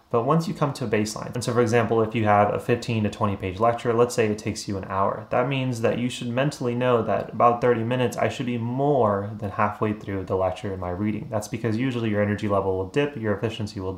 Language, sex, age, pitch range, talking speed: English, male, 30-49, 100-120 Hz, 260 wpm